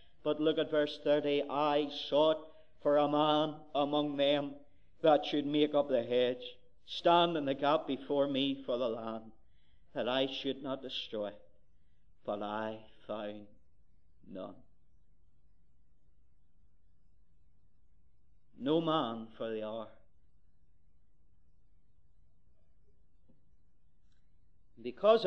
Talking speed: 100 wpm